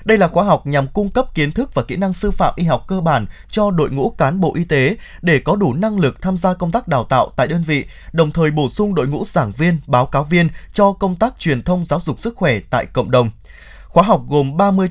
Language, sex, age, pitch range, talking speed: Vietnamese, male, 20-39, 140-195 Hz, 265 wpm